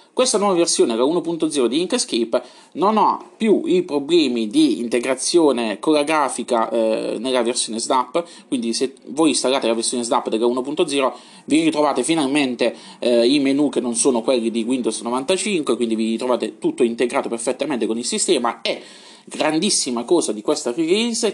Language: Italian